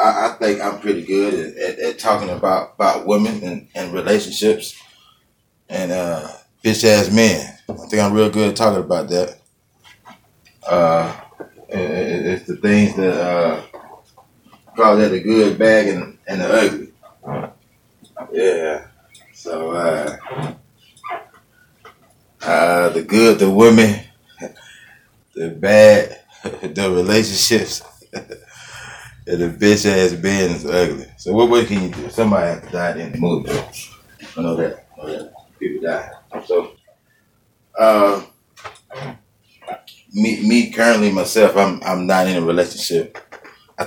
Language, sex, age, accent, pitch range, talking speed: English, male, 20-39, American, 90-110 Hz, 135 wpm